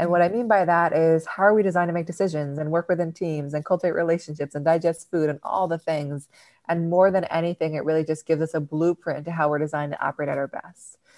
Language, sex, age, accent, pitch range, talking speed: English, female, 20-39, American, 150-175 Hz, 260 wpm